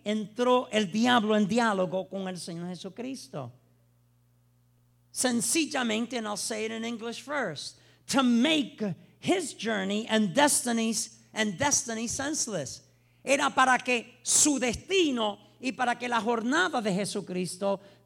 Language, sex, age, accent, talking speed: English, male, 50-69, American, 125 wpm